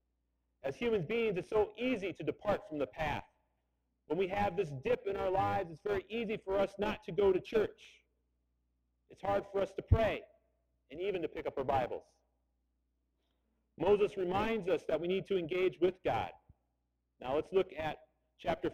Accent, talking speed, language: American, 185 wpm, English